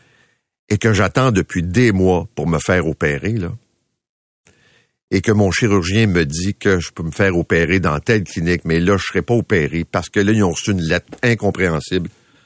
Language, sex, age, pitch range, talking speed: French, male, 50-69, 85-120 Hz, 195 wpm